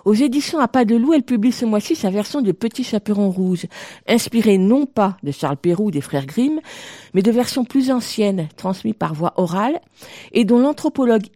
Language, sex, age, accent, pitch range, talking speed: French, female, 50-69, French, 180-245 Hz, 200 wpm